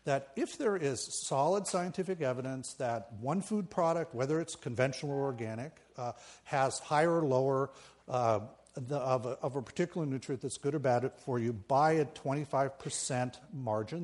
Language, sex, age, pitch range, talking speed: English, male, 50-69, 125-155 Hz, 165 wpm